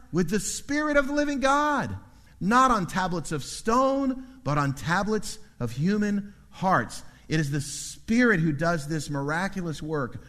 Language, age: English, 50-69